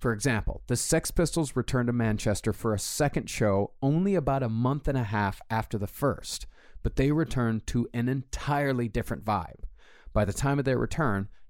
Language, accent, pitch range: English, American, 100-130 Hz